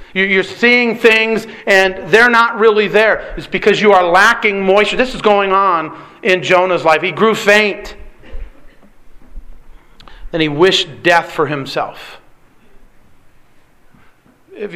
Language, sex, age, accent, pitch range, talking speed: English, male, 40-59, American, 170-210 Hz, 125 wpm